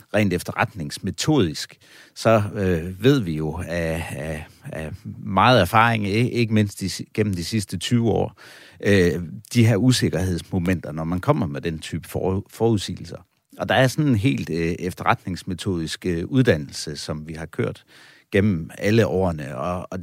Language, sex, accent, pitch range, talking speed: Danish, male, native, 85-120 Hz, 155 wpm